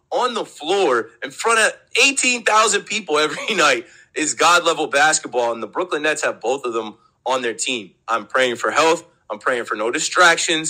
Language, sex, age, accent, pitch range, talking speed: English, male, 30-49, American, 135-180 Hz, 185 wpm